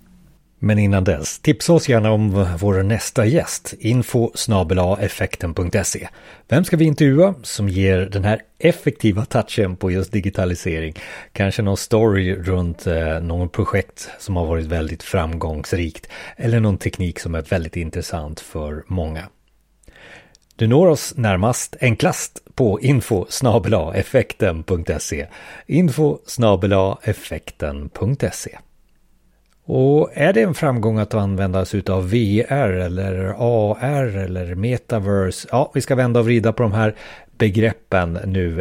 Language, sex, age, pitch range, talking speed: Swedish, male, 30-49, 90-115 Hz, 120 wpm